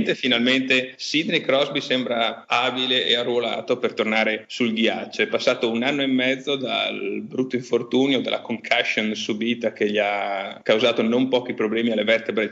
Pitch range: 110-130 Hz